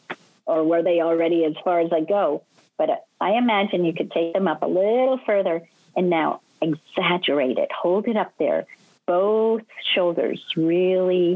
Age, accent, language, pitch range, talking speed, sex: 40-59, American, English, 170-220 Hz, 165 wpm, female